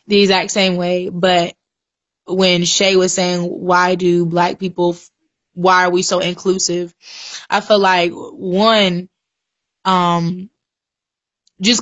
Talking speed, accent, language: 125 wpm, American, English